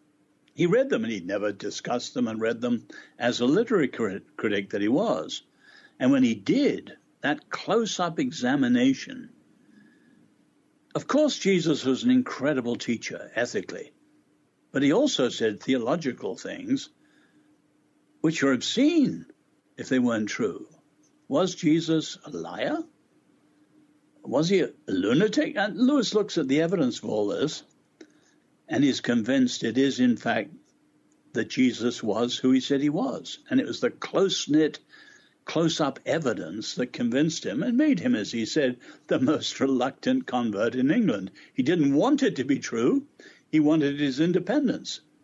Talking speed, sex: 145 wpm, male